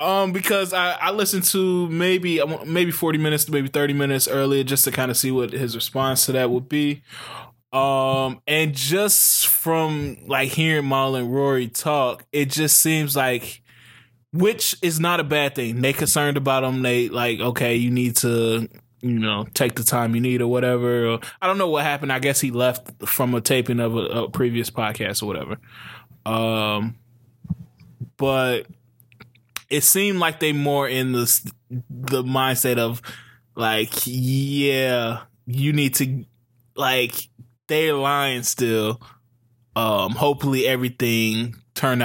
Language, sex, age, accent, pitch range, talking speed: English, male, 20-39, American, 120-145 Hz, 160 wpm